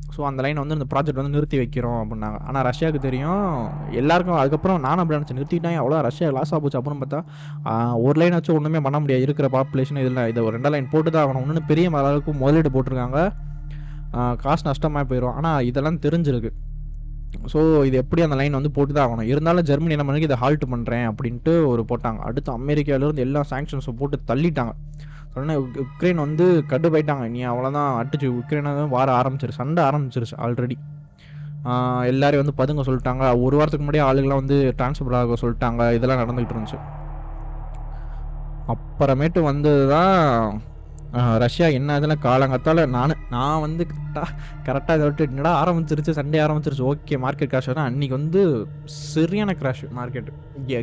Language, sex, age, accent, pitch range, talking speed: Tamil, male, 20-39, native, 125-150 Hz, 155 wpm